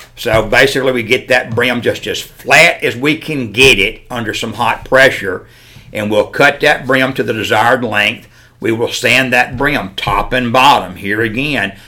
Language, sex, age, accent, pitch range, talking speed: English, male, 60-79, American, 115-135 Hz, 185 wpm